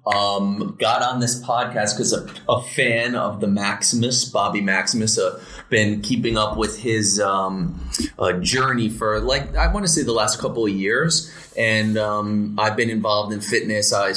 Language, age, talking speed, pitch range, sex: English, 30-49, 180 wpm, 95-110 Hz, male